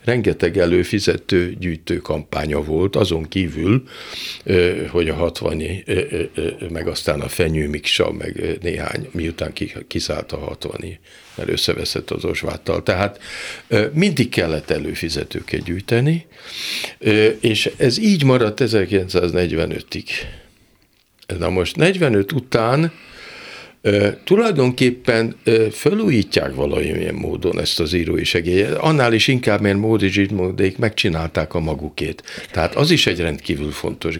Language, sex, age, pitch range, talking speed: Hungarian, male, 50-69, 85-120 Hz, 110 wpm